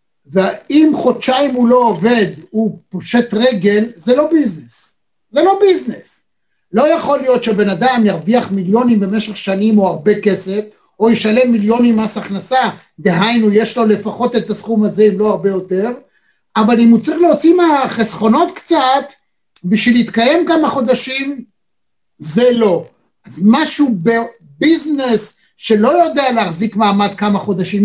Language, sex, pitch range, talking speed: Hebrew, male, 205-245 Hz, 135 wpm